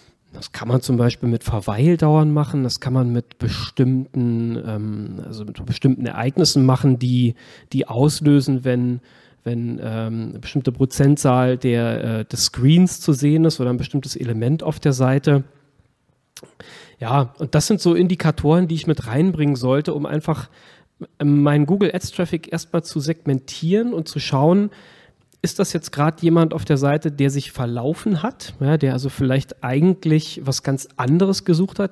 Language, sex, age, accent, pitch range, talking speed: German, male, 40-59, German, 125-155 Hz, 155 wpm